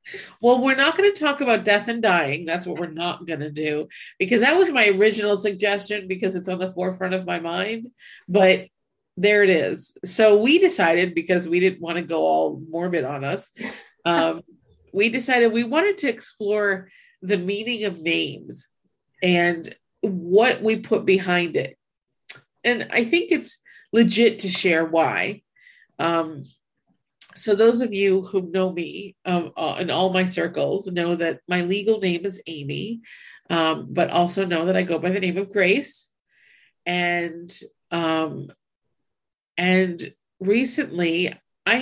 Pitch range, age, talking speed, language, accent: 175-215 Hz, 50-69, 160 wpm, English, American